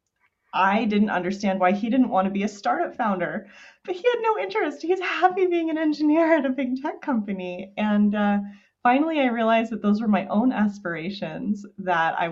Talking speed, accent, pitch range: 195 wpm, American, 160-210 Hz